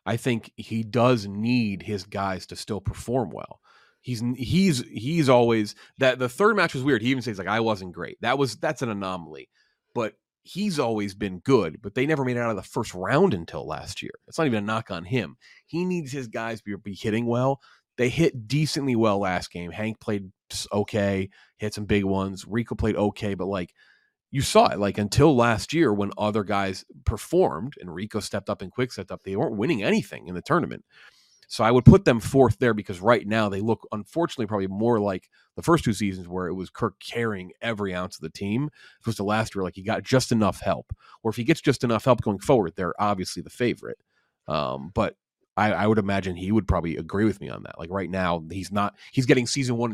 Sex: male